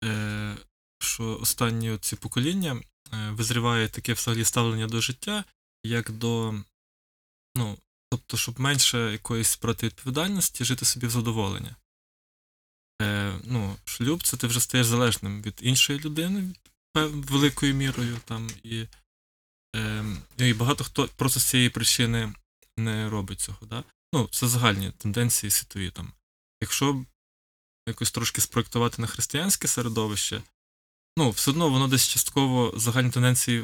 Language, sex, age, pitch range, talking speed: Ukrainian, male, 20-39, 105-125 Hz, 130 wpm